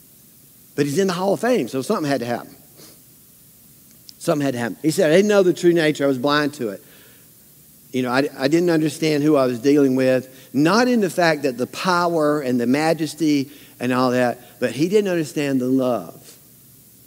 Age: 50-69